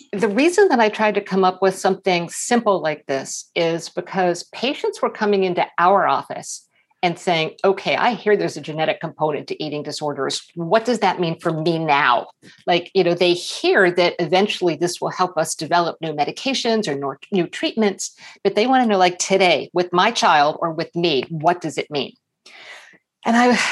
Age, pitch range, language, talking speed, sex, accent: 50-69, 170-215 Hz, English, 190 wpm, female, American